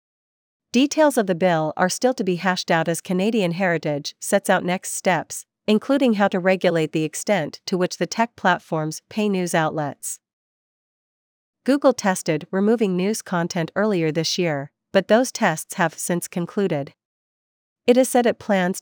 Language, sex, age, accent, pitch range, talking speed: English, female, 40-59, American, 165-210 Hz, 160 wpm